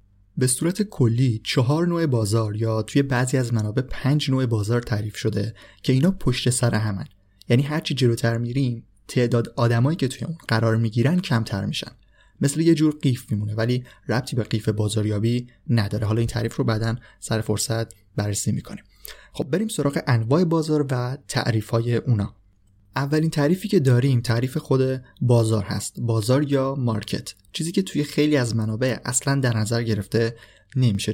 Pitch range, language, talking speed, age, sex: 110-135 Hz, Persian, 165 wpm, 30-49, male